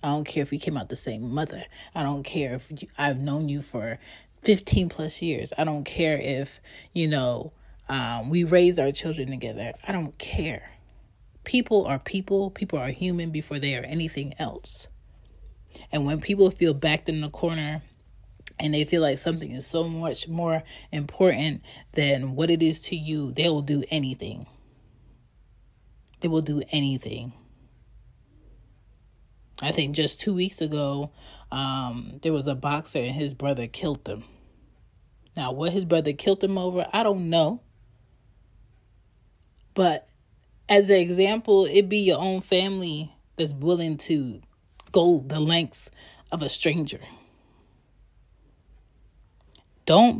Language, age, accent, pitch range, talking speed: English, 30-49, American, 125-165 Hz, 150 wpm